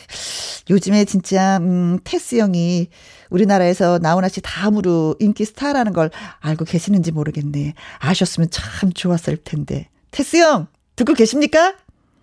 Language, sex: Korean, female